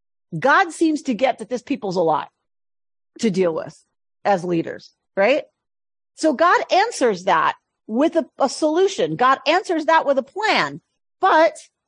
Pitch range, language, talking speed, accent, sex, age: 185-270 Hz, English, 150 wpm, American, female, 40-59